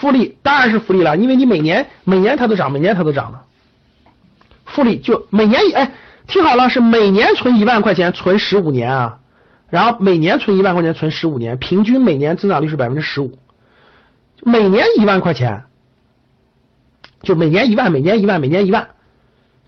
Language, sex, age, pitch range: Chinese, male, 50-69, 140-215 Hz